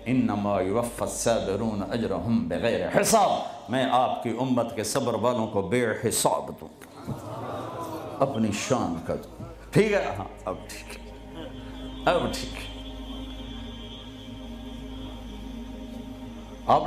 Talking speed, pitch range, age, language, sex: 95 wpm, 120-190 Hz, 60-79, Urdu, male